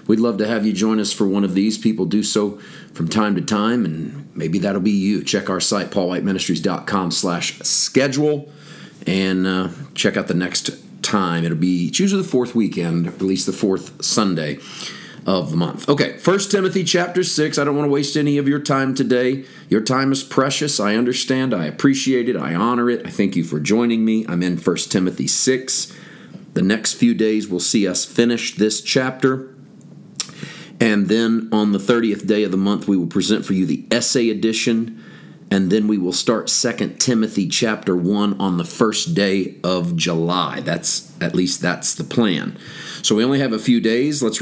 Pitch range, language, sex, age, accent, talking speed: 100-130 Hz, English, male, 40-59, American, 195 wpm